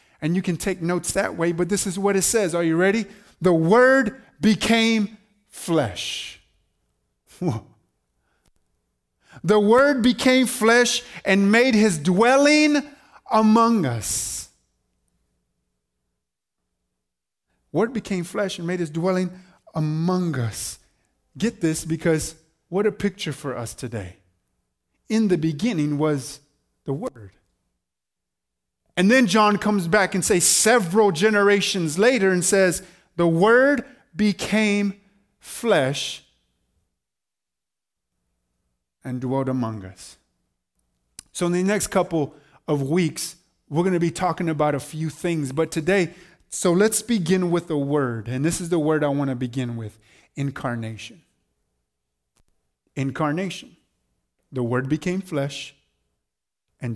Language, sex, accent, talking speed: English, male, American, 120 wpm